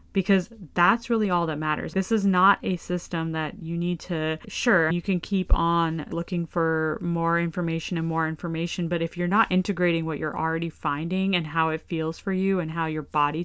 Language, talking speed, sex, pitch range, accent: English, 205 wpm, female, 155-175 Hz, American